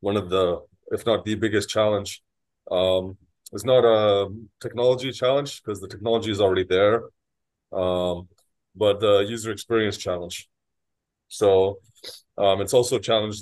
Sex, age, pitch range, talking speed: male, 20-39, 95-120 Hz, 145 wpm